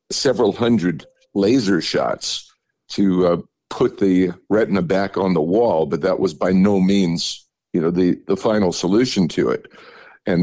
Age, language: 50-69, English